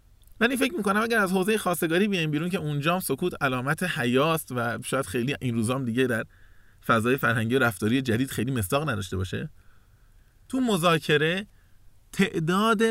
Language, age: Persian, 30-49